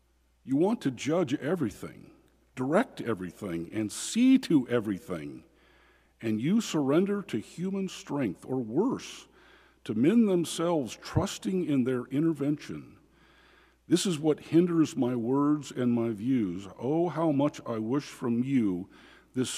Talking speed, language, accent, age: 130 wpm, English, American, 50-69